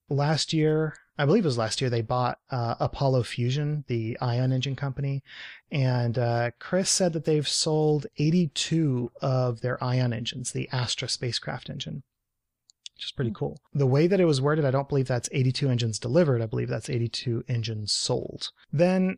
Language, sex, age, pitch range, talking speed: English, male, 30-49, 125-150 Hz, 180 wpm